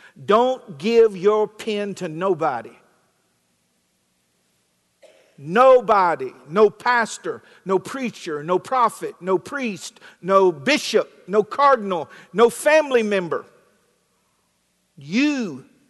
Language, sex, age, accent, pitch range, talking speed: English, male, 50-69, American, 155-210 Hz, 85 wpm